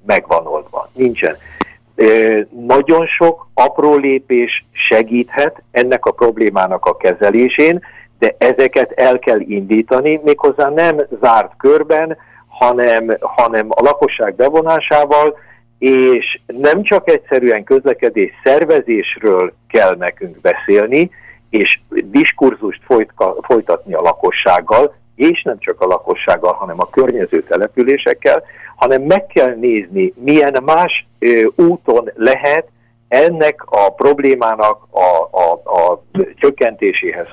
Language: Hungarian